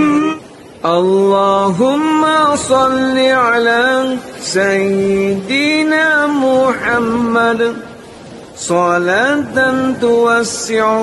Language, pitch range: Indonesian, 230-295 Hz